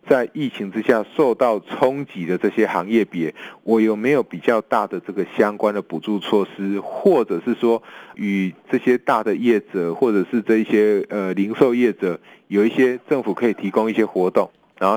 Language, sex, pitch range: Chinese, male, 100-115 Hz